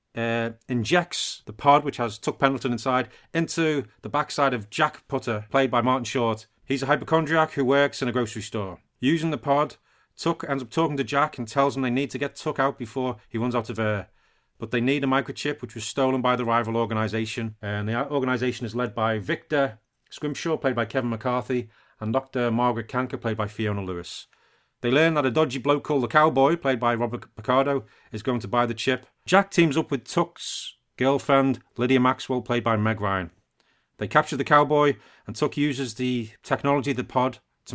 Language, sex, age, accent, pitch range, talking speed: English, male, 30-49, British, 115-140 Hz, 205 wpm